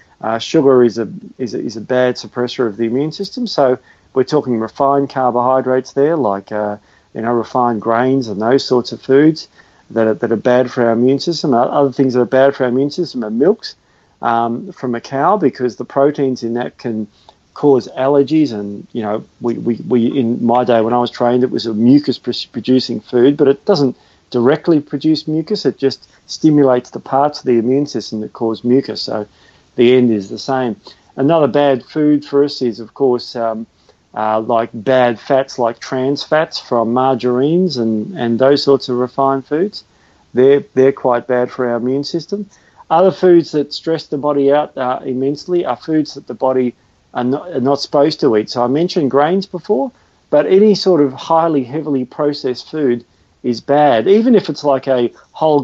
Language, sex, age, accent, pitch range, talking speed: English, male, 40-59, Australian, 120-145 Hz, 195 wpm